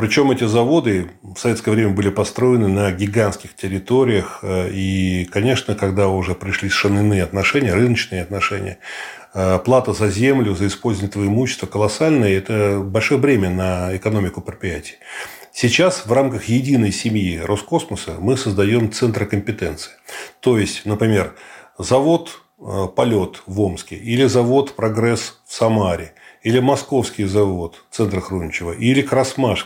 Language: Russian